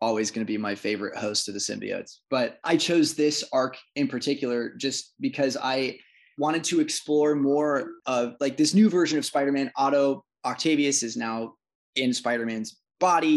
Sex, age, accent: male, 20-39, American